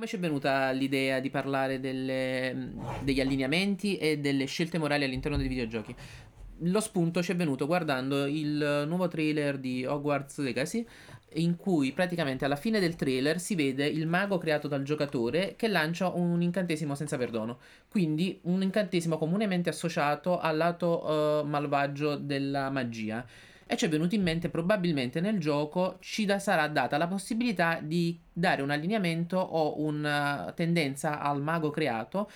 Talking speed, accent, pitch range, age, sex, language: 150 wpm, native, 140-175 Hz, 20-39, male, Italian